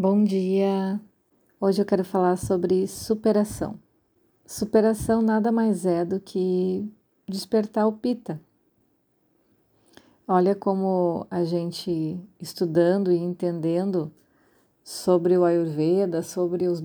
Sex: female